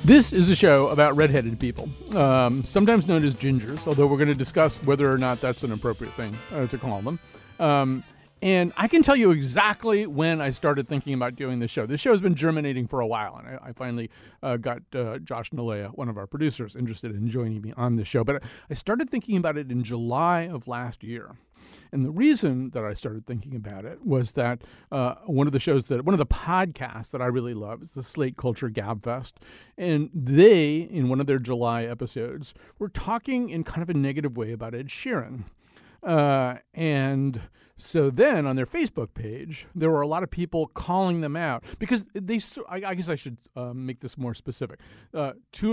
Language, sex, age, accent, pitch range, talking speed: English, male, 40-59, American, 120-160 Hz, 215 wpm